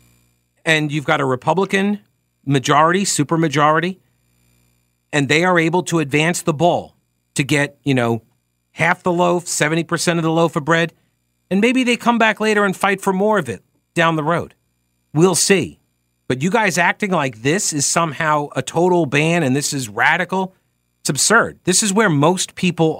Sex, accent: male, American